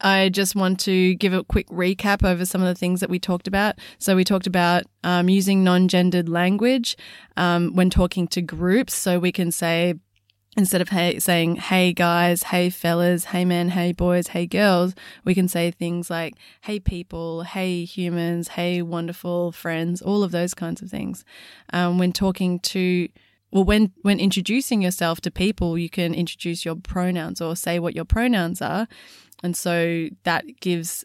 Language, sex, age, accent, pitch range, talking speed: English, female, 20-39, Australian, 170-190 Hz, 175 wpm